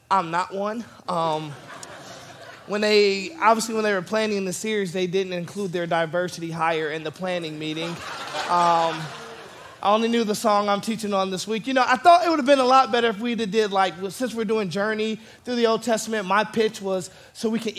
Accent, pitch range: American, 190-230 Hz